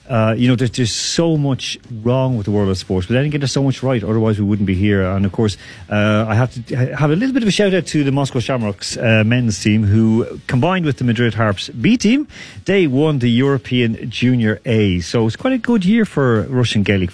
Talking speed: 245 wpm